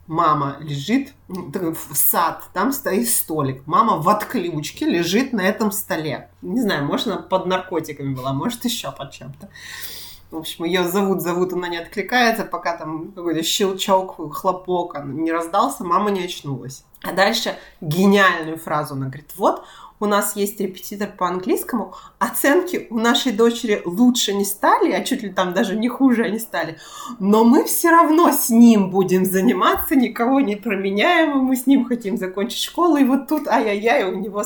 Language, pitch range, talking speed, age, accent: Russian, 175-245 Hz, 165 wpm, 30-49, native